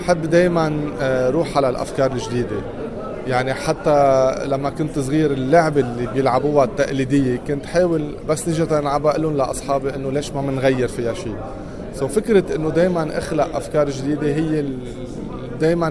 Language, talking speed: Arabic, 145 wpm